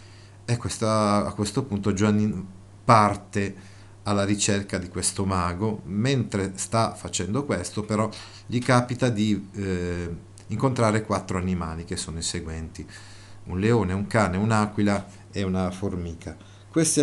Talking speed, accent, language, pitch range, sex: 125 wpm, native, Italian, 95-110 Hz, male